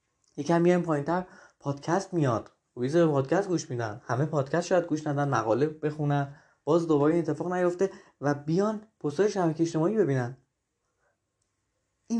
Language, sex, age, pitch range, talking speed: Persian, male, 20-39, 145-180 Hz, 140 wpm